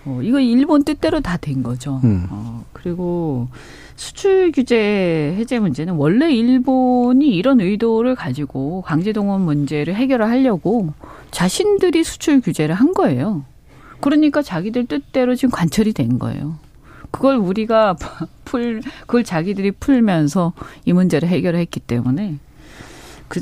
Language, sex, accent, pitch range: Korean, female, native, 150-235 Hz